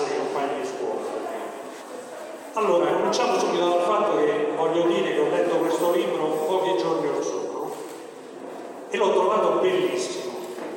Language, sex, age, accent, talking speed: Italian, male, 40-59, native, 140 wpm